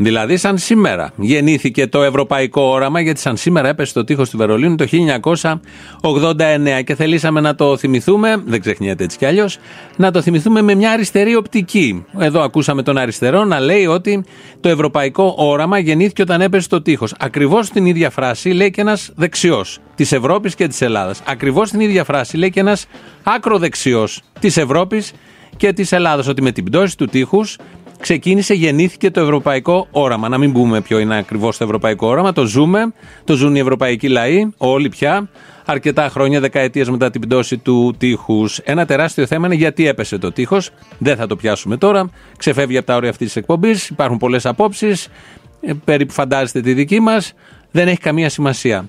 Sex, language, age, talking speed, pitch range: male, Greek, 30-49, 185 wpm, 130-190 Hz